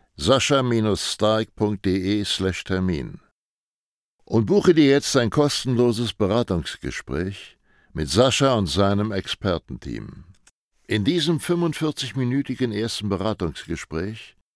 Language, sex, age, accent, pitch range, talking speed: German, male, 60-79, German, 95-125 Hz, 75 wpm